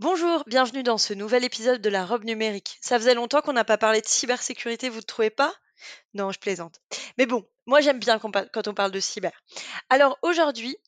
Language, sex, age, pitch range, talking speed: French, female, 20-39, 215-270 Hz, 220 wpm